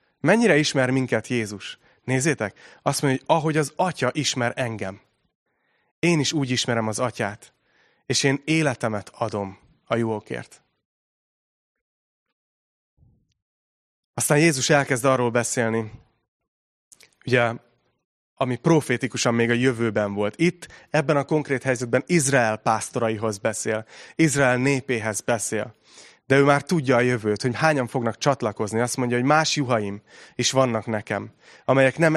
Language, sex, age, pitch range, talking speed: Hungarian, male, 30-49, 110-140 Hz, 125 wpm